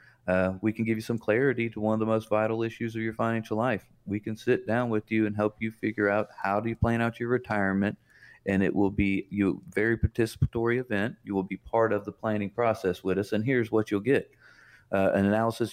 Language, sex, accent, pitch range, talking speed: English, male, American, 100-120 Hz, 235 wpm